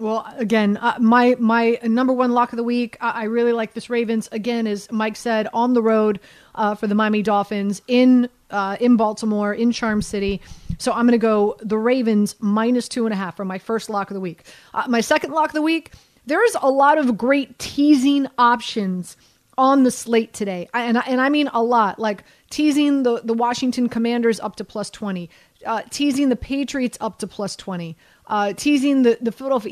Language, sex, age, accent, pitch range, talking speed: English, female, 30-49, American, 215-255 Hz, 210 wpm